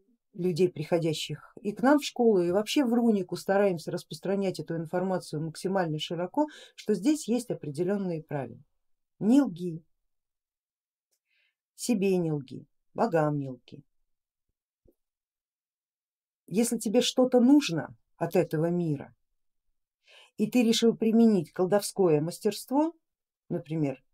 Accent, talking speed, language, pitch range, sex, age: native, 105 wpm, Russian, 155-215 Hz, female, 50-69